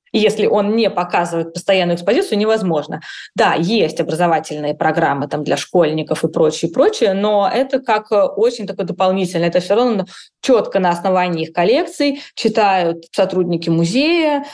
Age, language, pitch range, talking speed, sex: 20-39, Russian, 170-220 Hz, 145 wpm, female